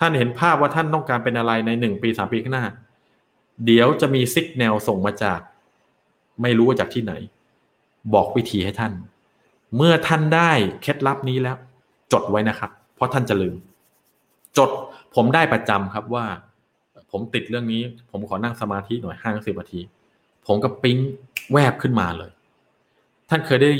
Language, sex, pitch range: Thai, male, 115-155 Hz